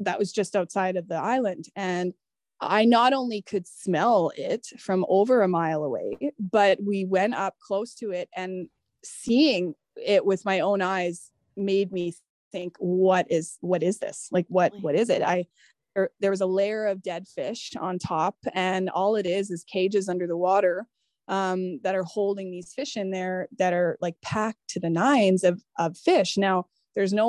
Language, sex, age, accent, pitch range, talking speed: English, female, 20-39, American, 180-225 Hz, 190 wpm